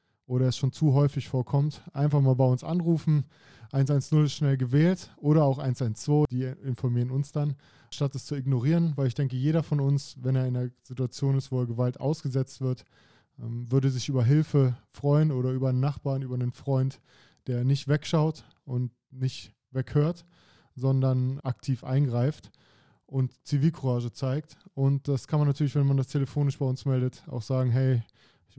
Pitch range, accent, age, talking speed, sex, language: 125-145 Hz, German, 20-39, 175 wpm, male, German